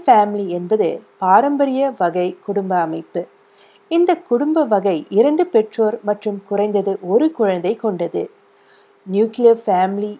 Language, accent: Tamil, native